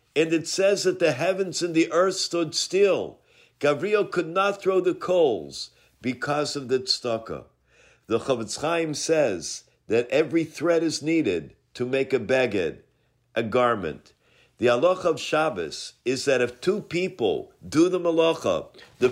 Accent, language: American, English